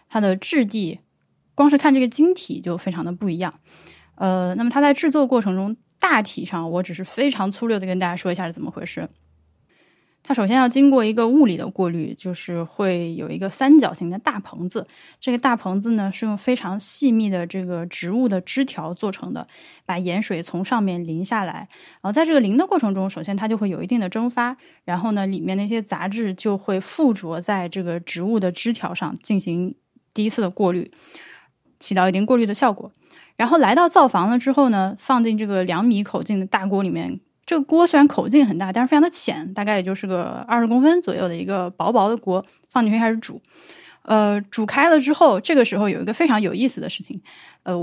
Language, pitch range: Chinese, 185-260 Hz